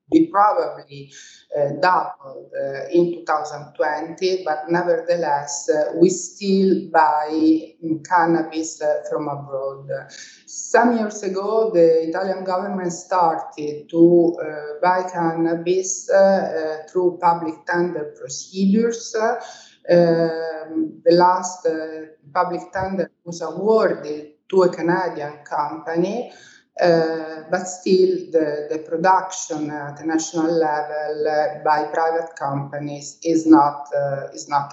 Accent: Italian